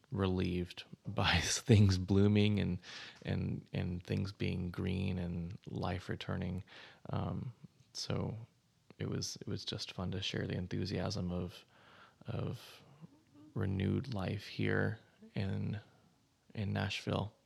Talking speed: 115 wpm